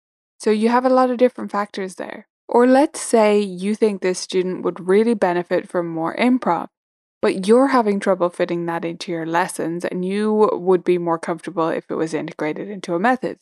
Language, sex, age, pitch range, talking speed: English, female, 10-29, 180-230 Hz, 195 wpm